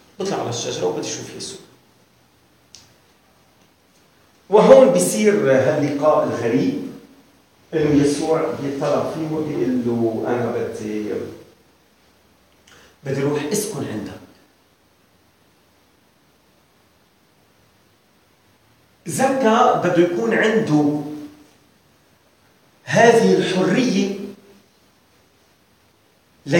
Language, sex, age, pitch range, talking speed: English, male, 40-59, 145-220 Hz, 65 wpm